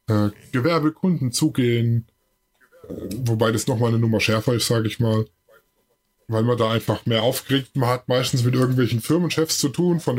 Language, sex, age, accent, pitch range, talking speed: German, male, 20-39, German, 115-145 Hz, 170 wpm